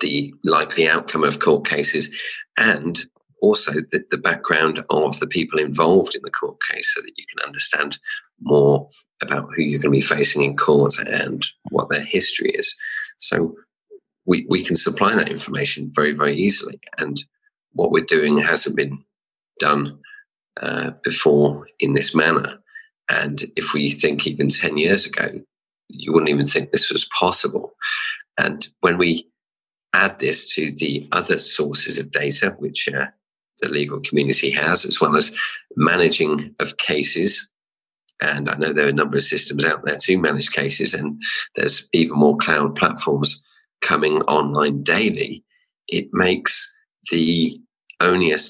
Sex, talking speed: male, 155 wpm